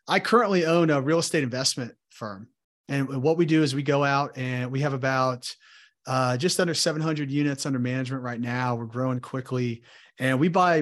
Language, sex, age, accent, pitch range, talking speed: English, male, 30-49, American, 120-150 Hz, 195 wpm